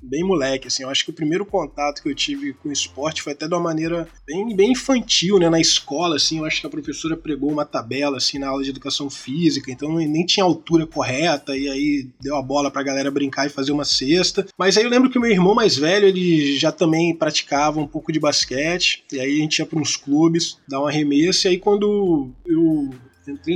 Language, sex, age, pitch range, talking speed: Portuguese, male, 20-39, 150-210 Hz, 235 wpm